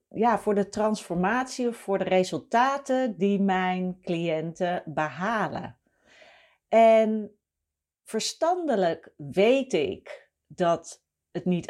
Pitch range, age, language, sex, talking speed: 155-215 Hz, 40-59, Dutch, female, 95 wpm